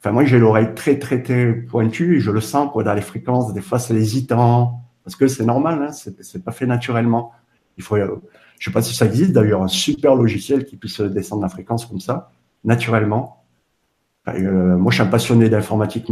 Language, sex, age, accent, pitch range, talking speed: French, male, 50-69, French, 95-125 Hz, 225 wpm